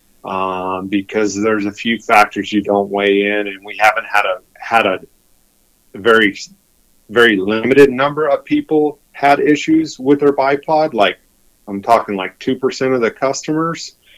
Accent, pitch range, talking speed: American, 100-115 Hz, 150 wpm